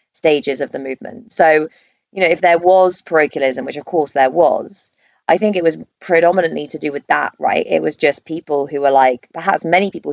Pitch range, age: 135-160 Hz, 20-39